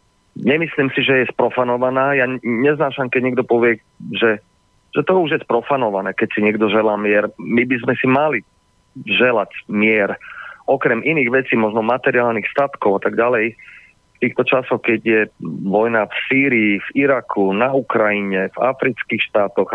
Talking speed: 155 wpm